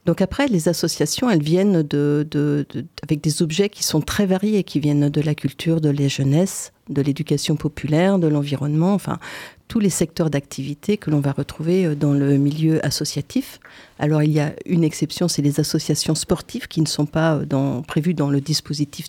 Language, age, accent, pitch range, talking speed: French, 50-69, French, 145-175 Hz, 180 wpm